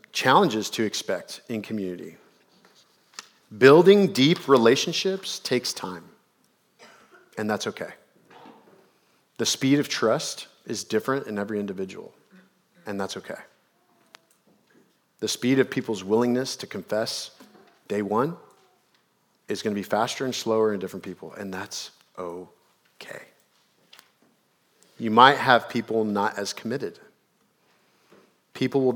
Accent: American